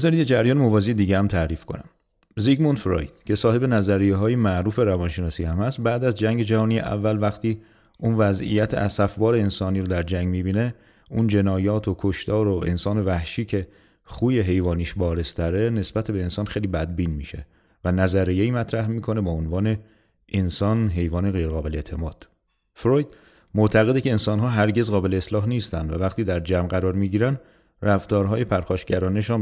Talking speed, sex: 155 wpm, male